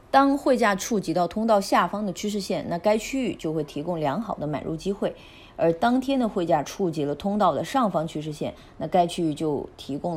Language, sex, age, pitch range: Chinese, female, 30-49, 150-210 Hz